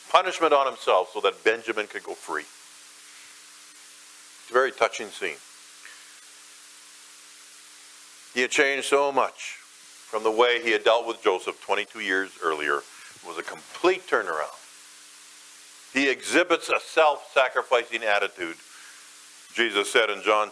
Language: English